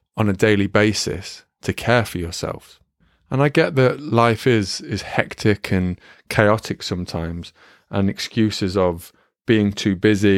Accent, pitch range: British, 95-115 Hz